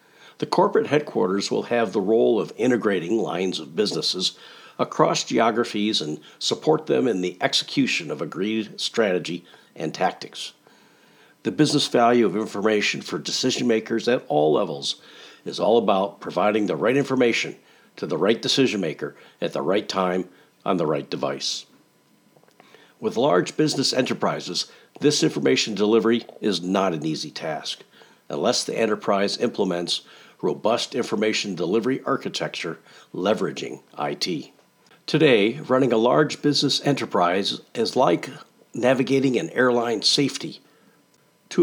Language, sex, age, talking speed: English, male, 60-79, 130 wpm